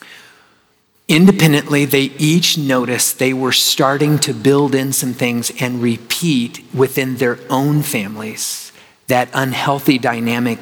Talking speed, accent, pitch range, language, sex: 120 wpm, American, 120-140 Hz, English, male